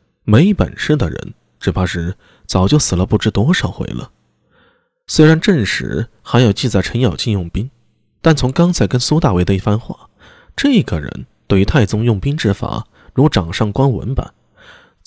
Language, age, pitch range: Chinese, 20-39, 95-150 Hz